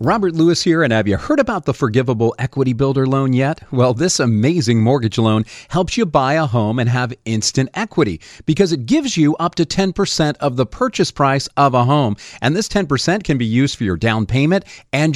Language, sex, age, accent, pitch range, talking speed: English, male, 40-59, American, 125-175 Hz, 210 wpm